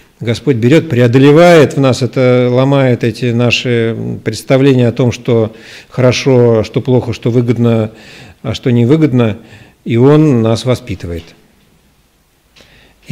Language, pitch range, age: Russian, 110-130 Hz, 50-69